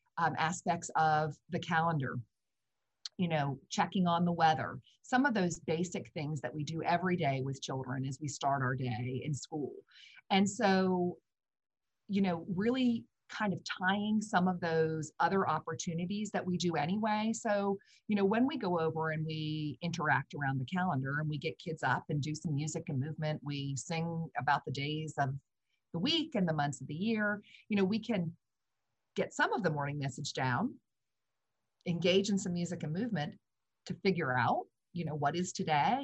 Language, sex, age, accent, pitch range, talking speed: English, female, 40-59, American, 140-185 Hz, 185 wpm